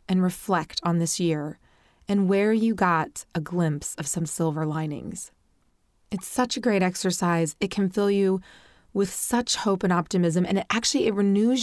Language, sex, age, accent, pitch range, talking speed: English, female, 30-49, American, 170-220 Hz, 175 wpm